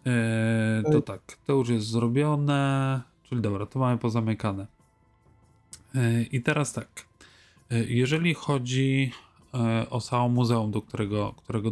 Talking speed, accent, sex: 115 wpm, native, male